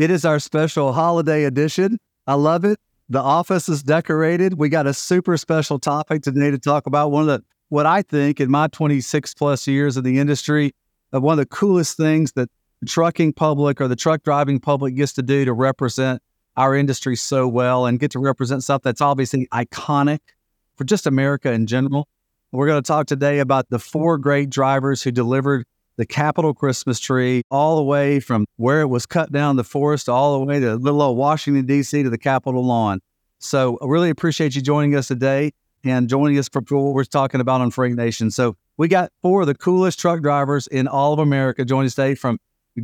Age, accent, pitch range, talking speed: 40-59, American, 130-155 Hz, 205 wpm